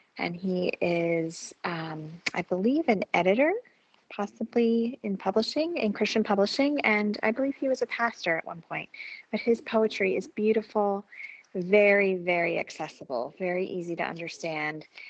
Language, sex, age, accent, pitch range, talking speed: English, female, 20-39, American, 175-235 Hz, 145 wpm